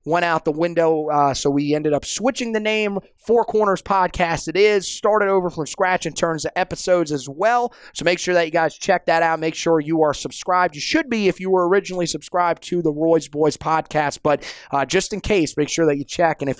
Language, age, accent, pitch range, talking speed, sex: English, 30-49, American, 155-185 Hz, 240 wpm, male